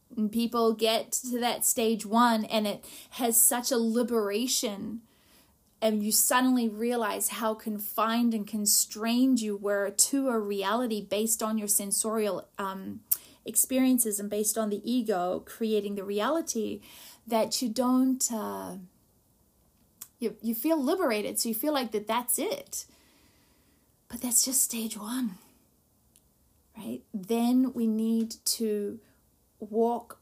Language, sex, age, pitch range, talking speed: English, female, 30-49, 205-235 Hz, 130 wpm